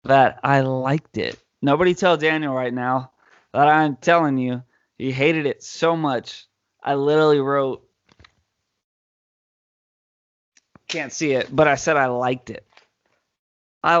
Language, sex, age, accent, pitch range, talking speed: English, male, 20-39, American, 135-160 Hz, 135 wpm